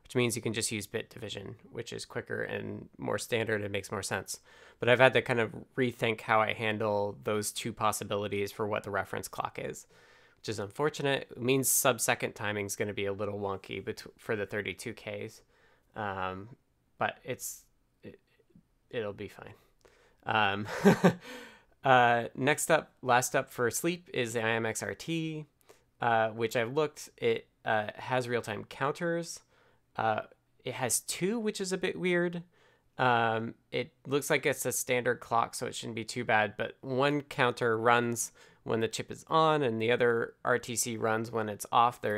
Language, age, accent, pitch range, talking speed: English, 20-39, American, 110-130 Hz, 175 wpm